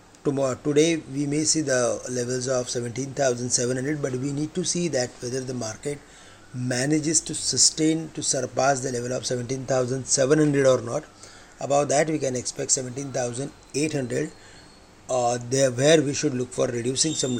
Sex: male